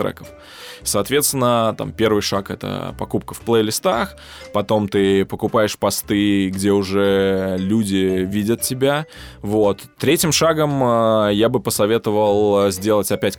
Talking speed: 110 wpm